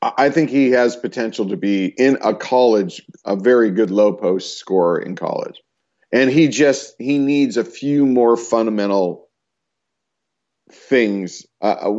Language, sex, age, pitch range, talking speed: English, male, 40-59, 110-150 Hz, 145 wpm